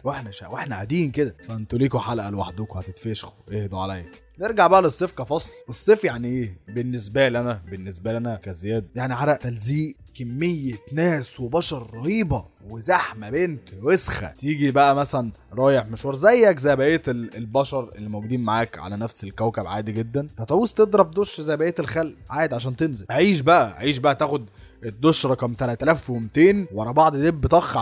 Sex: male